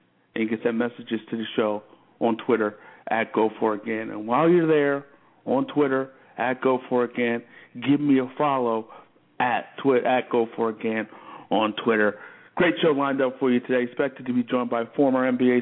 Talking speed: 175 wpm